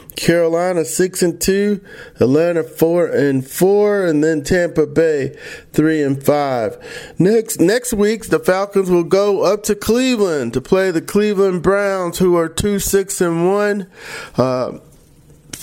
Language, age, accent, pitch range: English, 40-59, American, 155-195 Hz